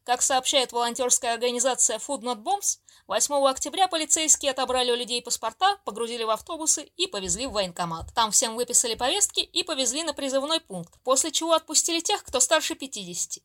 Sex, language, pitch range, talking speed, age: female, Russian, 235-300 Hz, 165 wpm, 20-39